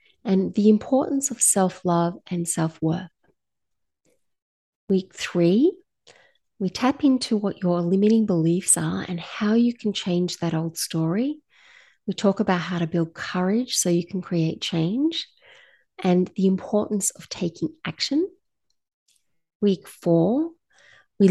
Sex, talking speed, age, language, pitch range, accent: female, 130 wpm, 30-49, English, 170-240 Hz, Australian